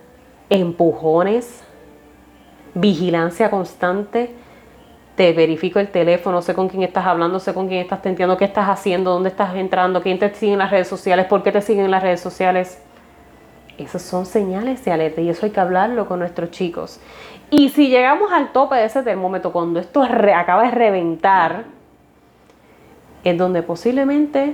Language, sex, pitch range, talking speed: Spanish, female, 175-225 Hz, 165 wpm